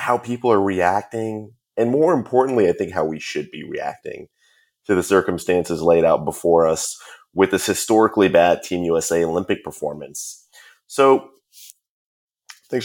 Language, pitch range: English, 85-120 Hz